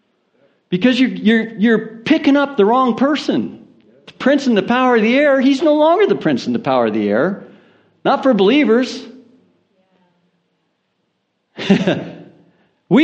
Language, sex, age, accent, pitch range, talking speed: English, male, 60-79, American, 175-245 Hz, 145 wpm